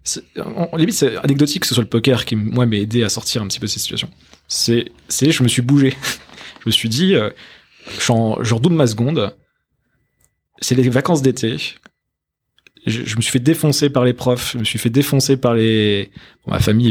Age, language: 20-39, French